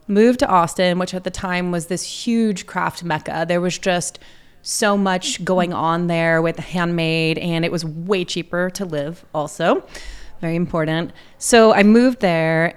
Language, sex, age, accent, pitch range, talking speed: English, female, 30-49, American, 165-215 Hz, 170 wpm